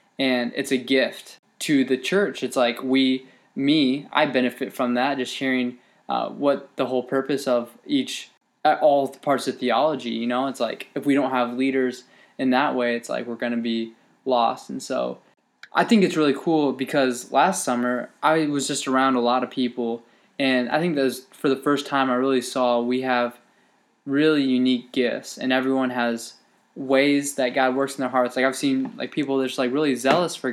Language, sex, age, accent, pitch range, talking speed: English, male, 20-39, American, 125-140 Hz, 200 wpm